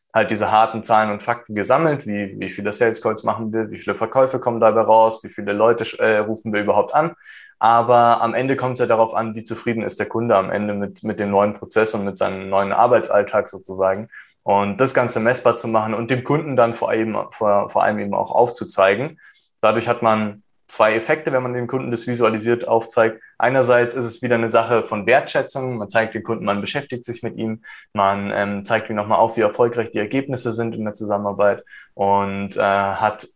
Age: 20-39